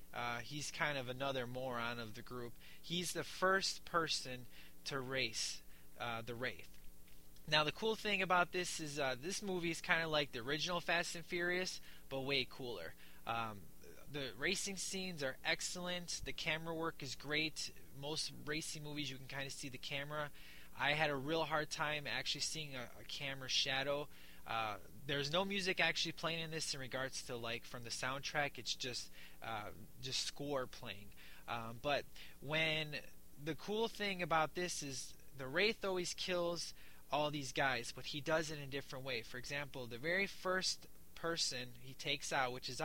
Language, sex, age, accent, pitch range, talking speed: English, male, 20-39, American, 125-165 Hz, 180 wpm